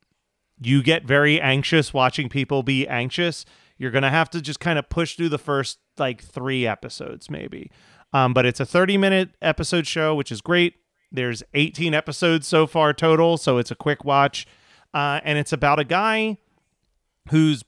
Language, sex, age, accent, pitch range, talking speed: English, male, 30-49, American, 125-155 Hz, 180 wpm